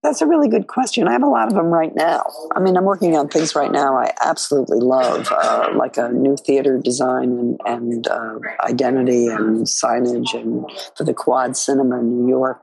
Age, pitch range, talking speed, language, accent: 50-69, 120-135 Hz, 210 wpm, English, American